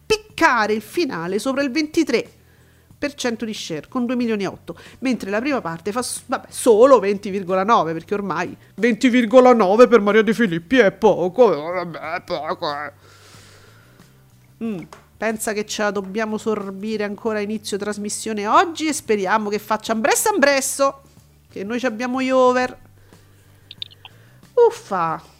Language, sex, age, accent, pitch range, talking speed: Italian, female, 40-59, native, 185-250 Hz, 135 wpm